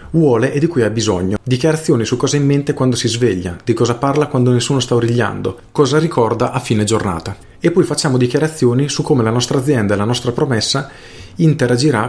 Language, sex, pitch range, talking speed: Italian, male, 110-145 Hz, 205 wpm